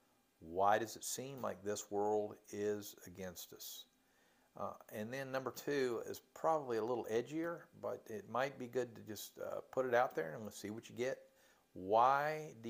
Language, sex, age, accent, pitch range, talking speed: English, male, 50-69, American, 100-130 Hz, 190 wpm